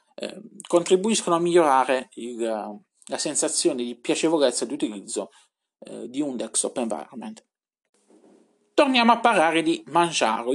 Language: Italian